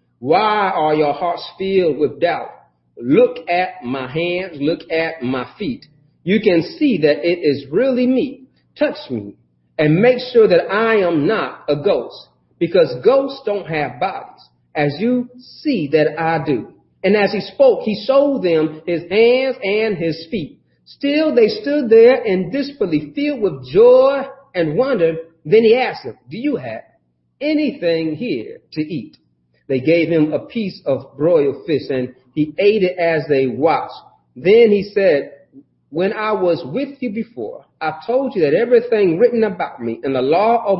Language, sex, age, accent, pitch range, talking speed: English, male, 40-59, American, 155-260 Hz, 170 wpm